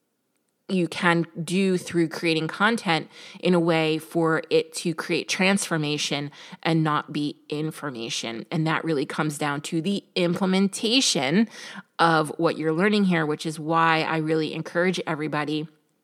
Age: 30-49